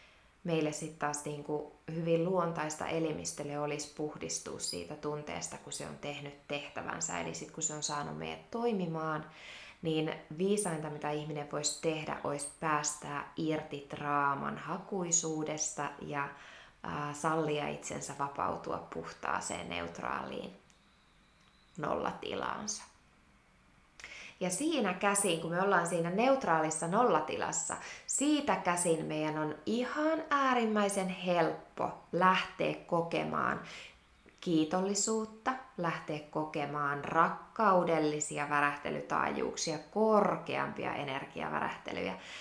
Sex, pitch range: female, 150-185 Hz